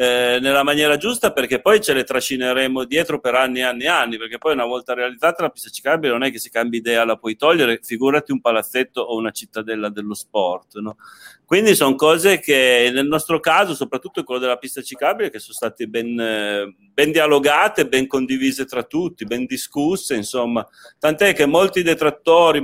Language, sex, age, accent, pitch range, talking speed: Italian, male, 30-49, native, 120-150 Hz, 185 wpm